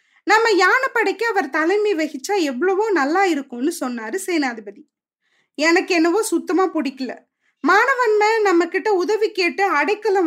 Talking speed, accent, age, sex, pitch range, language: 125 wpm, native, 20-39, female, 290-395 Hz, Tamil